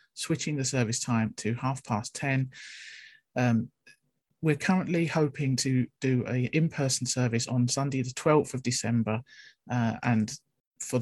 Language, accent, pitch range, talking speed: English, British, 115-130 Hz, 140 wpm